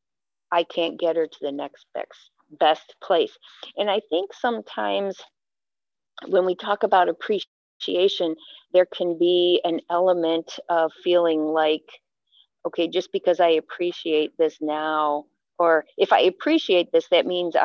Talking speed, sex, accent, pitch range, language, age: 135 wpm, female, American, 155-190 Hz, English, 50-69